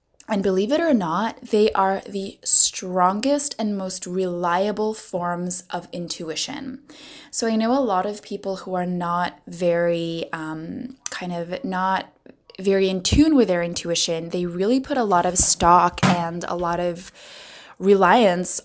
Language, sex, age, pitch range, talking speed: English, female, 20-39, 175-215 Hz, 155 wpm